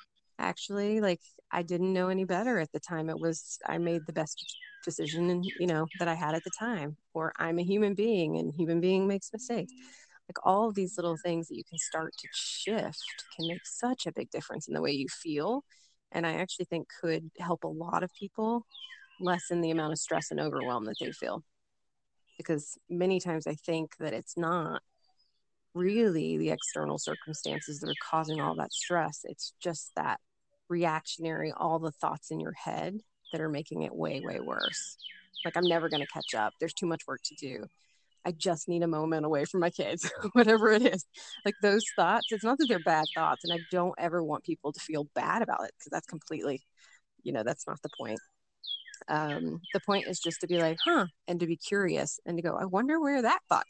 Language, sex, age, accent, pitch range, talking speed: English, female, 20-39, American, 160-195 Hz, 210 wpm